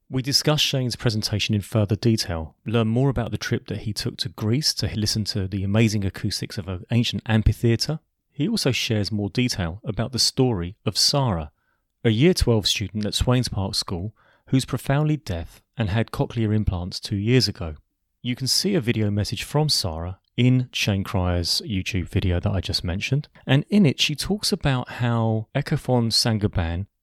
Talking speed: 180 wpm